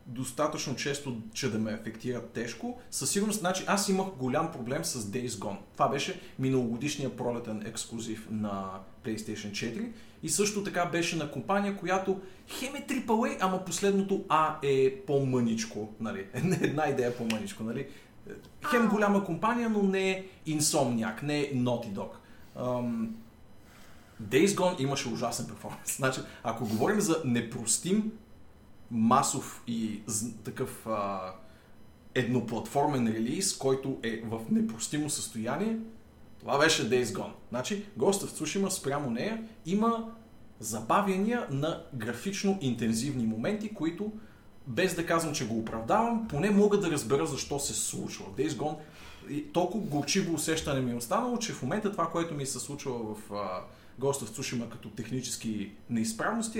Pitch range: 115-190 Hz